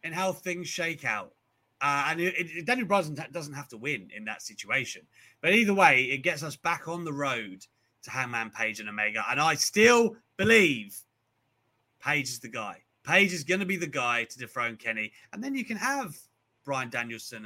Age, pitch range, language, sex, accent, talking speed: 30-49, 115-170 Hz, English, male, British, 200 wpm